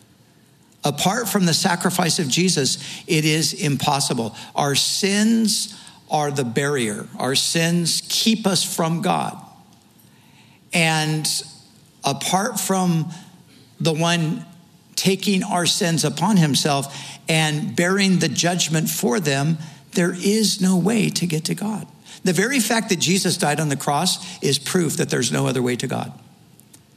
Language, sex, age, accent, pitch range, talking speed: English, male, 60-79, American, 150-195 Hz, 140 wpm